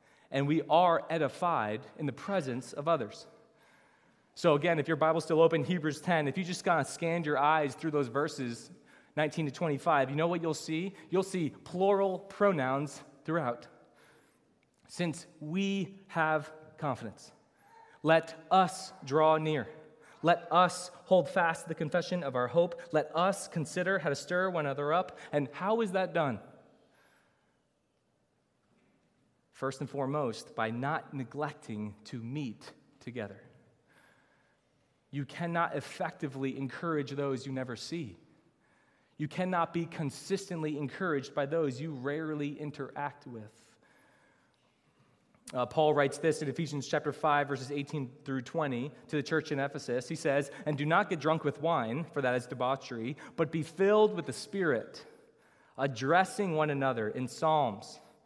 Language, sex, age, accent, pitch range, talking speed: English, male, 20-39, American, 140-170 Hz, 145 wpm